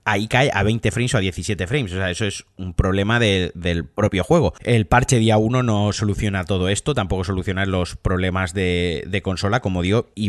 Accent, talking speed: Spanish, 215 wpm